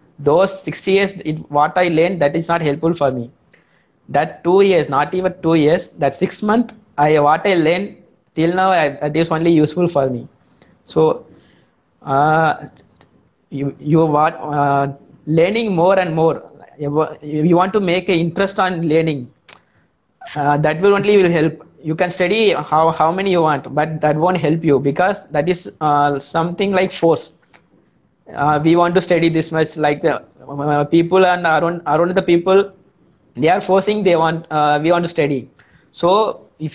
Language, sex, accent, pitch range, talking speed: Hindi, male, native, 150-180 Hz, 175 wpm